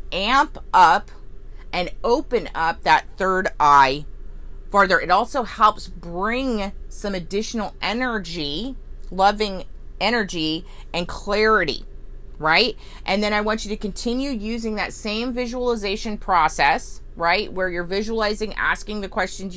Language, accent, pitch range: English, American, 155-225 Hz